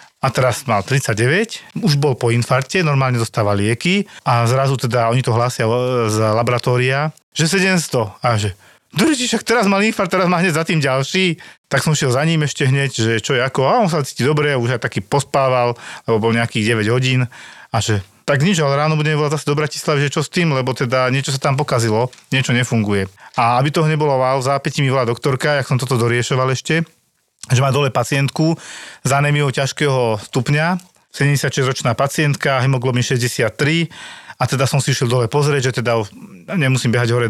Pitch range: 120-145 Hz